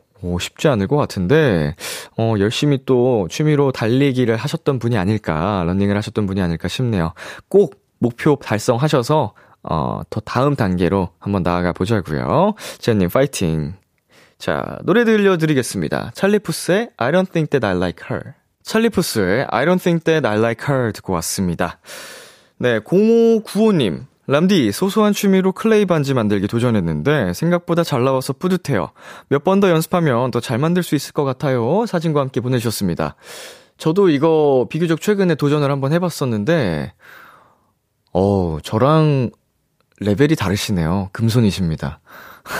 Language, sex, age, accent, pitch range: Korean, male, 20-39, native, 100-160 Hz